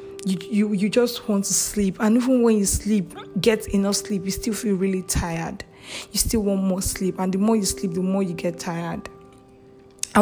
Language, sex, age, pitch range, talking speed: English, female, 10-29, 170-210 Hz, 210 wpm